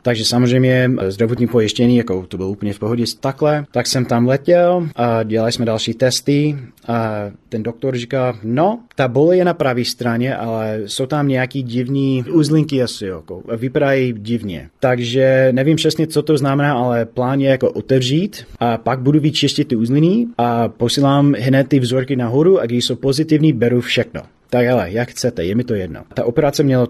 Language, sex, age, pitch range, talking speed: Czech, male, 30-49, 115-145 Hz, 180 wpm